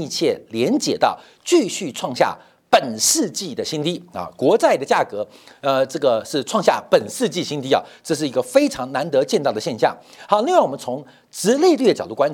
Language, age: Chinese, 50-69